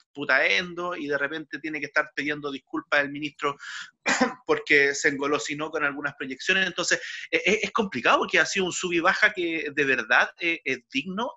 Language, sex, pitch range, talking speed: Spanish, male, 140-180 Hz, 180 wpm